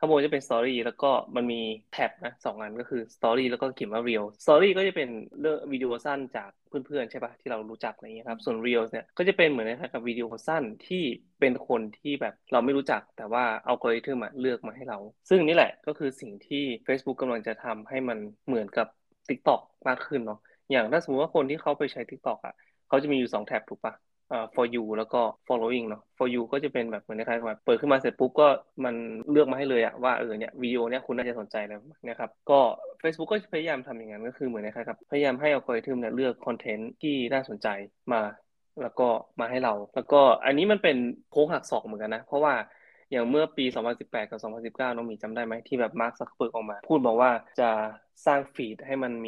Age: 20-39